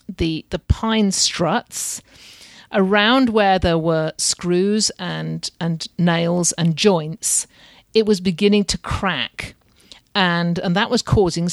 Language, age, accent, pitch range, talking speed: English, 50-69, British, 175-225 Hz, 125 wpm